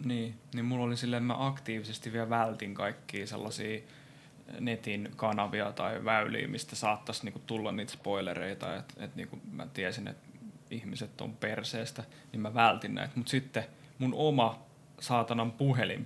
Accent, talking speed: native, 155 wpm